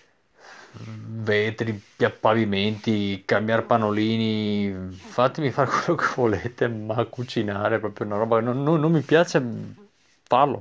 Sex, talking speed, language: male, 130 wpm, Italian